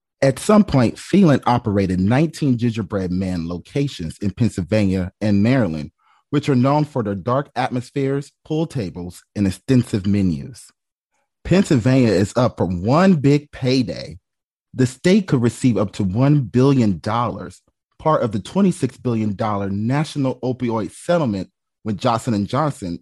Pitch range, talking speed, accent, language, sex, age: 100-140 Hz, 135 wpm, American, English, male, 30-49